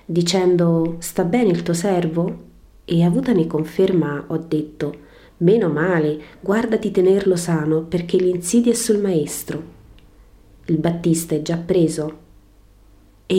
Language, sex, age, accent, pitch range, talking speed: Italian, female, 30-49, native, 150-195 Hz, 120 wpm